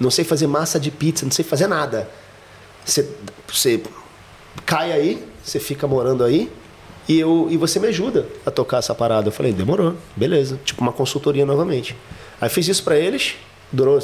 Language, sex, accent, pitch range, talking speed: Portuguese, male, Brazilian, 115-150 Hz, 175 wpm